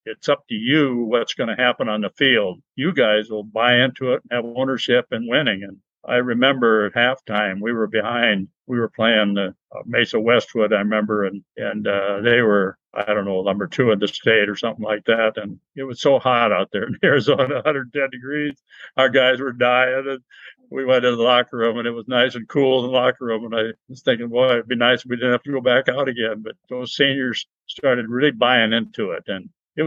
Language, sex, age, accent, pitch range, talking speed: English, male, 60-79, American, 110-130 Hz, 230 wpm